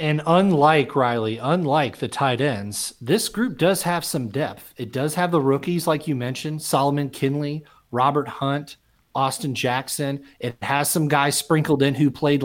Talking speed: 170 wpm